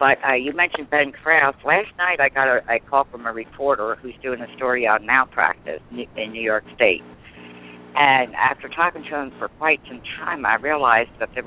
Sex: female